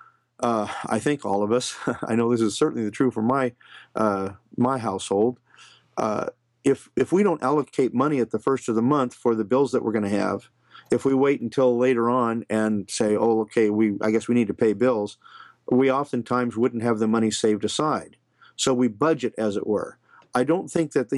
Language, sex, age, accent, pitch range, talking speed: English, male, 50-69, American, 110-130 Hz, 215 wpm